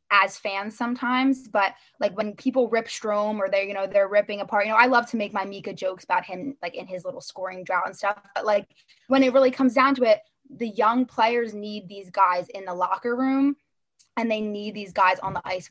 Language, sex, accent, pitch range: English, female, American, 195-250 Hz